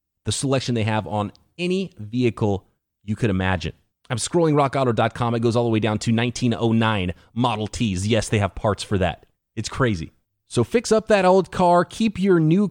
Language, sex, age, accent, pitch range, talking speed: English, male, 30-49, American, 105-135 Hz, 190 wpm